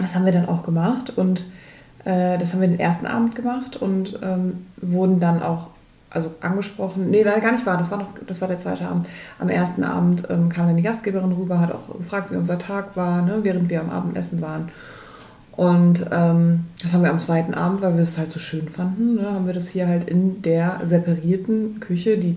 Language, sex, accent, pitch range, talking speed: German, female, German, 170-190 Hz, 225 wpm